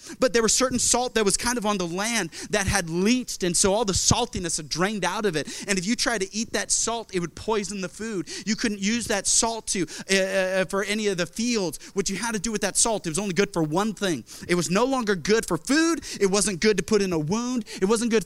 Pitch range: 140-215 Hz